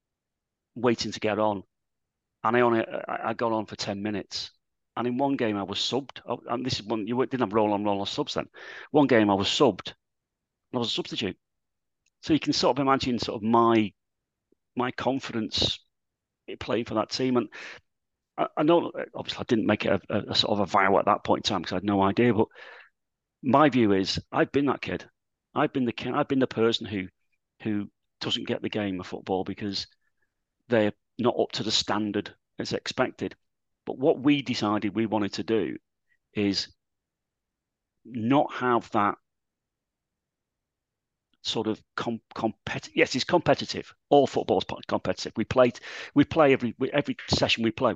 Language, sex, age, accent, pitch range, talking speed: English, male, 40-59, British, 100-125 Hz, 190 wpm